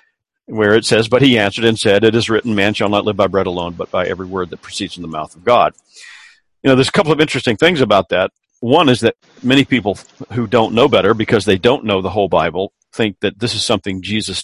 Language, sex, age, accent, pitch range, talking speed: English, male, 50-69, American, 100-130 Hz, 255 wpm